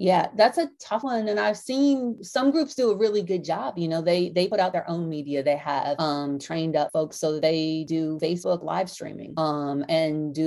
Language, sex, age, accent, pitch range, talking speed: English, female, 30-49, American, 150-185 Hz, 225 wpm